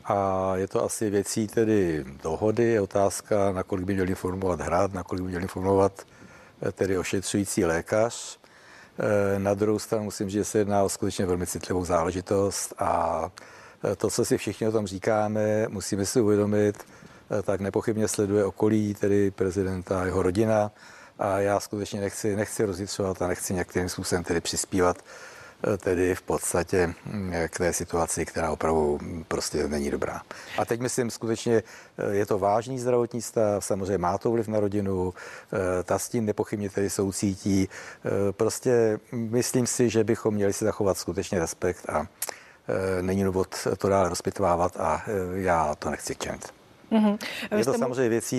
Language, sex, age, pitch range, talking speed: Czech, male, 60-79, 90-110 Hz, 150 wpm